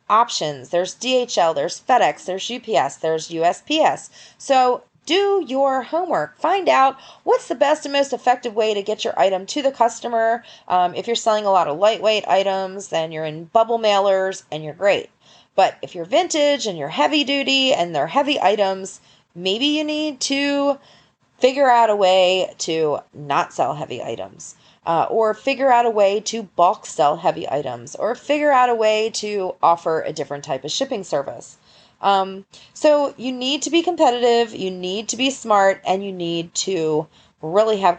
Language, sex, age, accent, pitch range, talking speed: English, female, 30-49, American, 175-270 Hz, 180 wpm